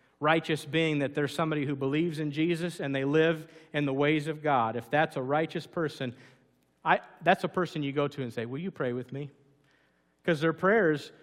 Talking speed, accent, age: 210 wpm, American, 50-69